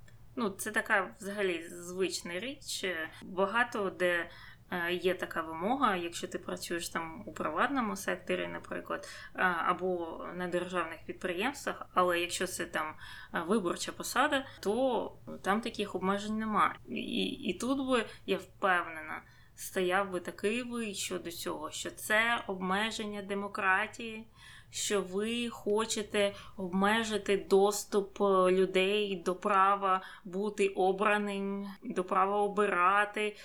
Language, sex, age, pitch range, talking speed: Ukrainian, female, 20-39, 180-210 Hz, 115 wpm